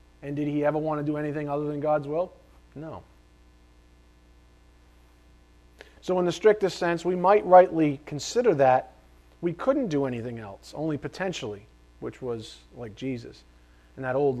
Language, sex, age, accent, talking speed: English, male, 40-59, American, 155 wpm